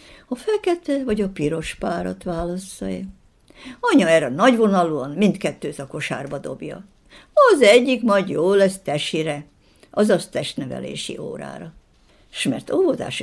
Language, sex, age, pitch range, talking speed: Hungarian, female, 60-79, 155-245 Hz, 115 wpm